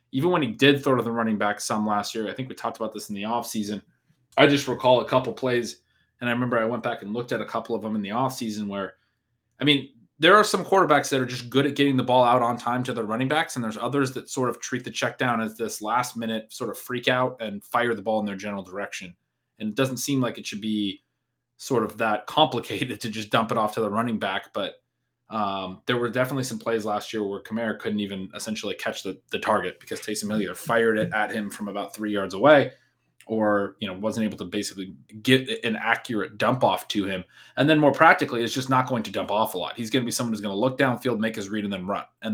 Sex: male